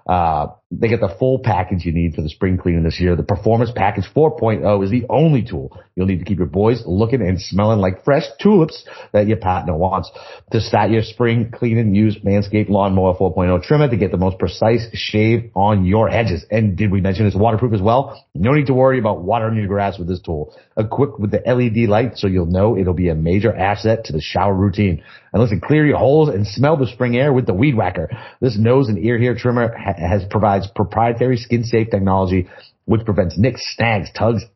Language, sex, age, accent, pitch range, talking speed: English, male, 30-49, American, 95-120 Hz, 220 wpm